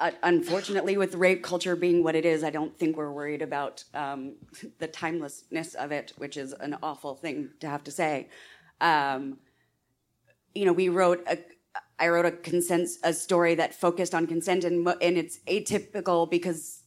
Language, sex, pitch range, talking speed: English, female, 150-175 Hz, 180 wpm